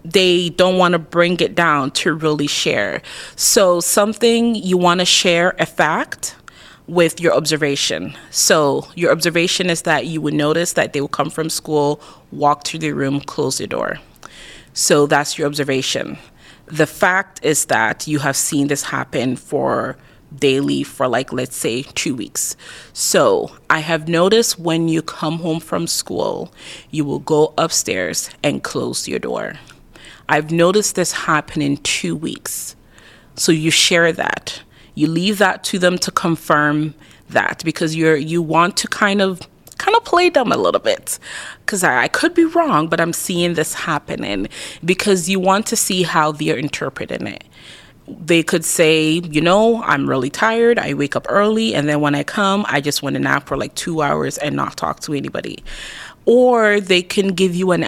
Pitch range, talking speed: 150-185 Hz, 175 wpm